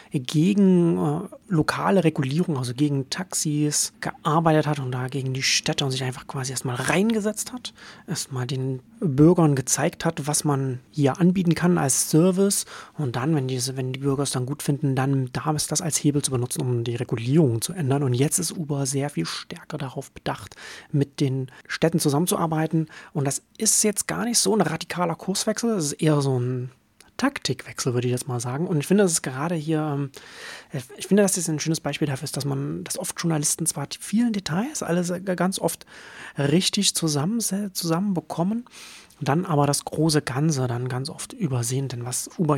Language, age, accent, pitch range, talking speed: German, 30-49, German, 135-175 Hz, 185 wpm